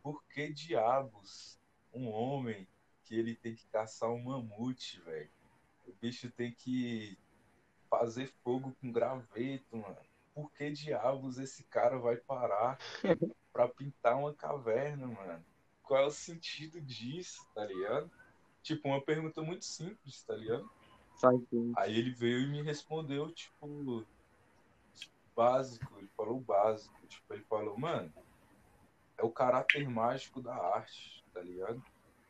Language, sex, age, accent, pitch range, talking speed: Portuguese, male, 20-39, Brazilian, 115-140 Hz, 135 wpm